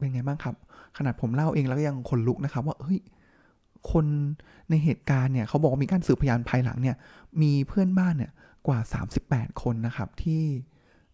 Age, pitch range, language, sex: 20-39, 125-165 Hz, Thai, male